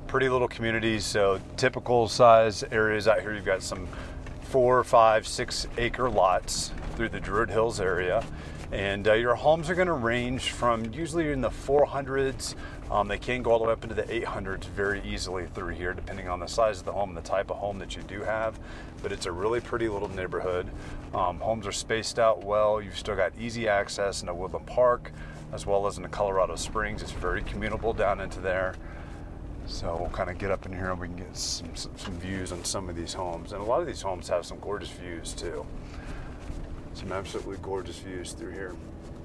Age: 30-49